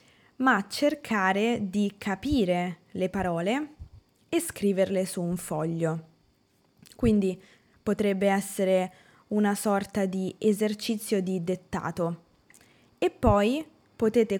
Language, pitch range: Italian, 180-215 Hz